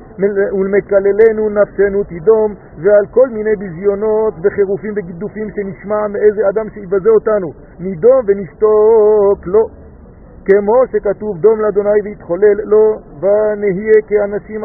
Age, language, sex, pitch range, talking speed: 50-69, French, male, 195-215 Hz, 100 wpm